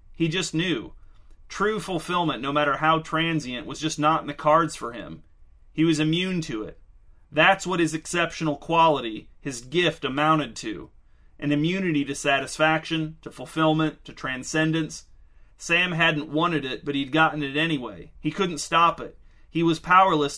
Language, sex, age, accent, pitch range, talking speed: English, male, 30-49, American, 140-165 Hz, 160 wpm